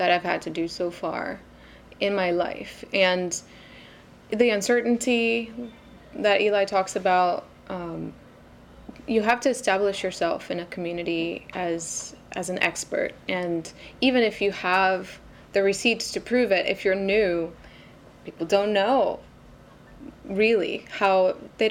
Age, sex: 20-39, female